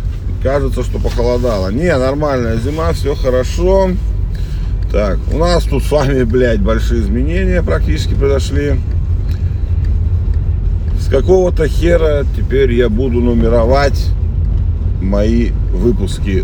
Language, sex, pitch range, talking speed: Russian, male, 85-100 Hz, 100 wpm